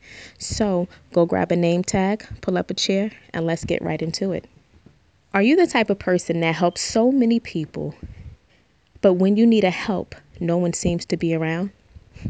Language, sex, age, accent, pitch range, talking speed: English, female, 20-39, American, 175-220 Hz, 190 wpm